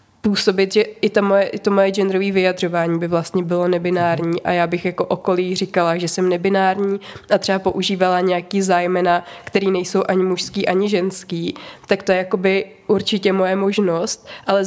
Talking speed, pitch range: 170 wpm, 180-195 Hz